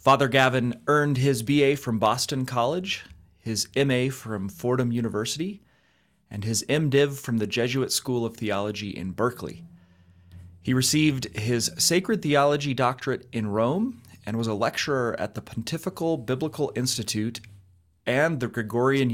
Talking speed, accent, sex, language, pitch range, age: 140 wpm, American, male, English, 105-140 Hz, 30-49